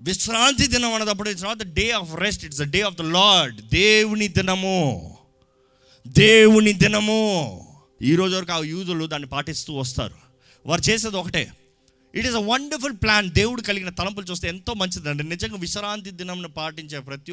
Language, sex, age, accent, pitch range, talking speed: Telugu, male, 30-49, native, 130-200 Hz, 160 wpm